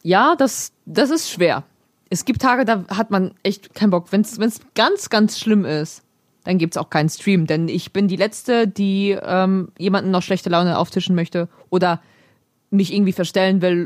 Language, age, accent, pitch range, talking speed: German, 20-39, German, 170-205 Hz, 190 wpm